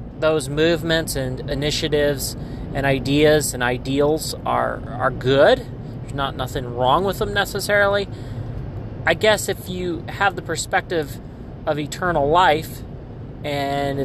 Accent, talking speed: American, 125 wpm